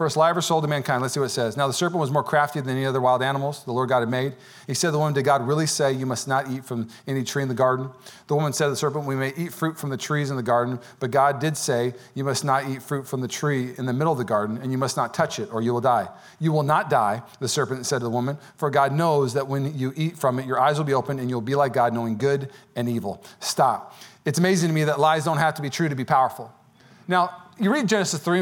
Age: 40-59